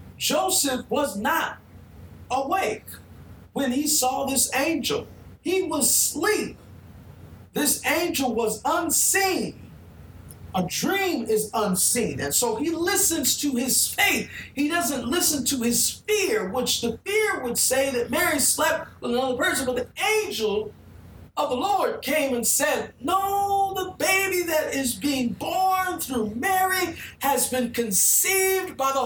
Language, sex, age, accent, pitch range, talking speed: English, male, 50-69, American, 235-340 Hz, 135 wpm